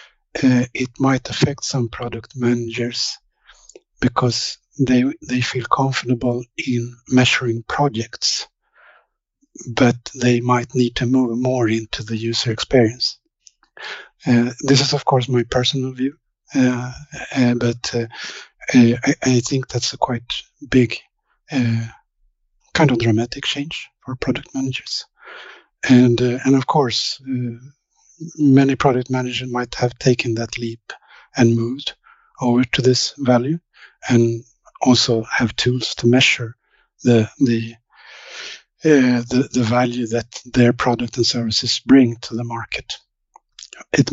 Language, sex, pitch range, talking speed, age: English, male, 120-135 Hz, 130 wpm, 50-69